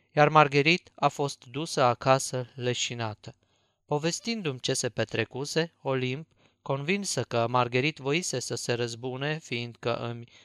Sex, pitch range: male, 120-155 Hz